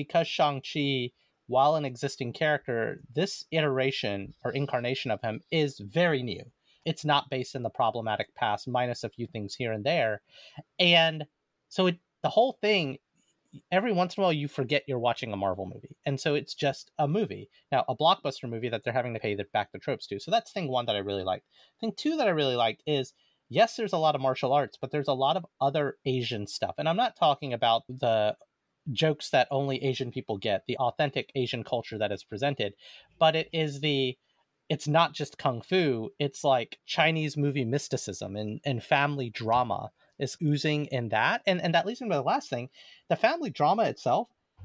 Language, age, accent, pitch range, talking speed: English, 30-49, American, 120-155 Hz, 200 wpm